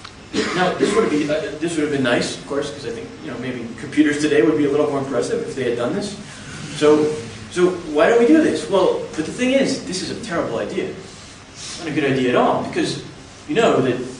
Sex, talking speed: male, 250 wpm